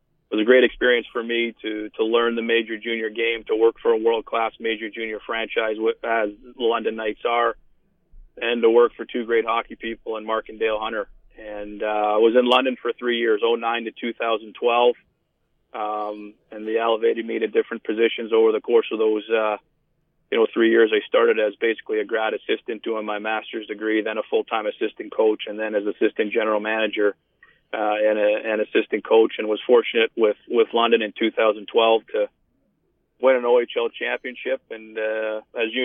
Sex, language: male, English